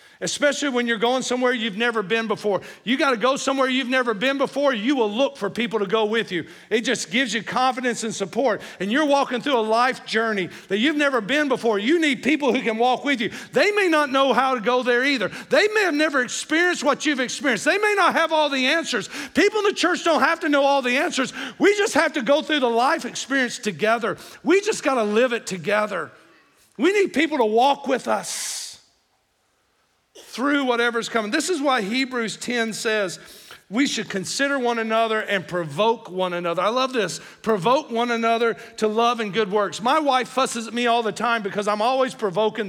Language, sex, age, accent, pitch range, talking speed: English, male, 50-69, American, 215-275 Hz, 215 wpm